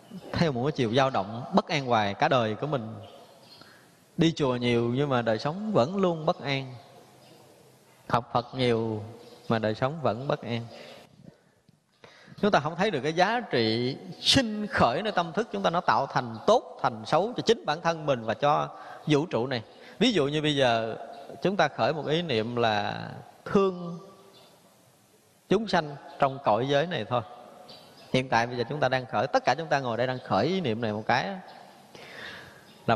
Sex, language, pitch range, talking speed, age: male, Vietnamese, 120-185 Hz, 195 wpm, 20-39